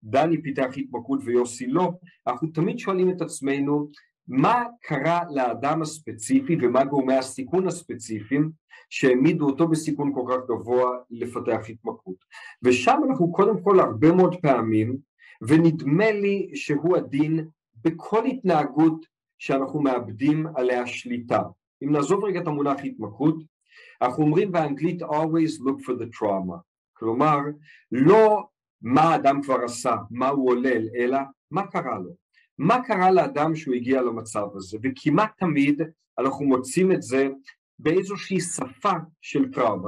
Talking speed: 130 wpm